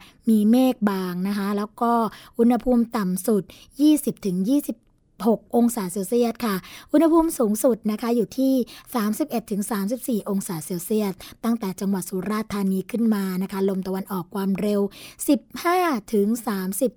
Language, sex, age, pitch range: Thai, female, 20-39, 195-240 Hz